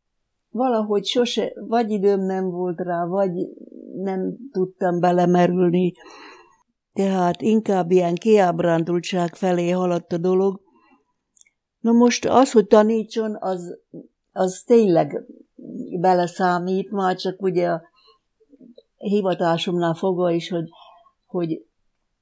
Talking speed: 100 wpm